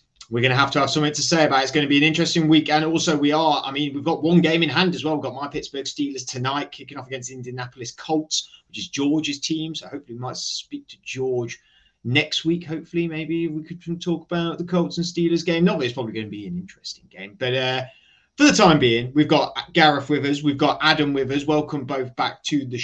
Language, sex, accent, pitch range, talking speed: English, male, British, 125-160 Hz, 250 wpm